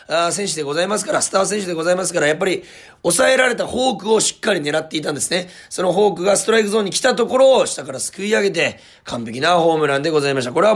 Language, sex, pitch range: Japanese, male, 145-210 Hz